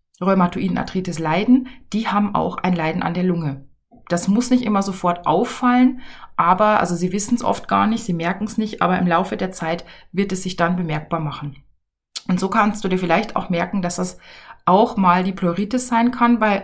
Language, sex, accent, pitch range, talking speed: German, female, German, 175-220 Hz, 205 wpm